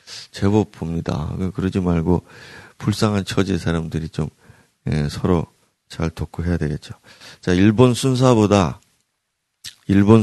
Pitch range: 85-115 Hz